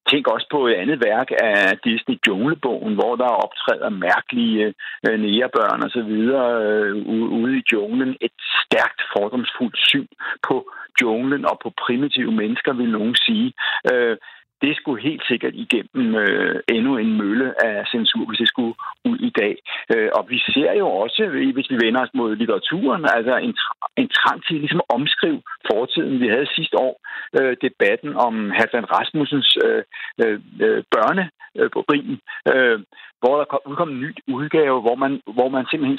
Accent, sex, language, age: native, male, Danish, 60-79